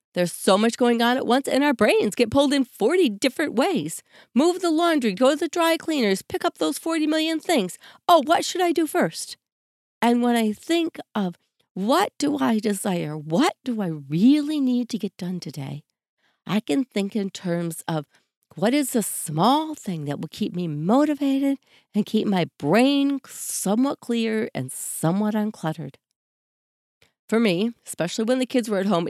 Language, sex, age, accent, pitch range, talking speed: English, female, 40-59, American, 185-275 Hz, 180 wpm